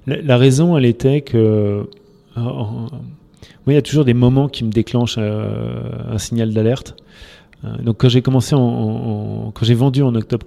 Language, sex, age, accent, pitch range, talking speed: French, male, 30-49, French, 105-120 Hz, 200 wpm